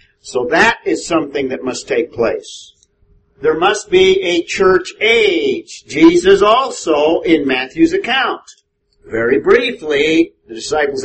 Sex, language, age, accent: male, English, 50-69, American